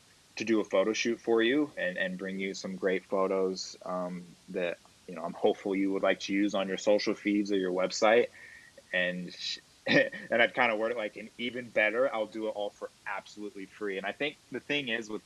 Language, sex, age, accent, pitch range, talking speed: English, male, 20-39, American, 95-115 Hz, 225 wpm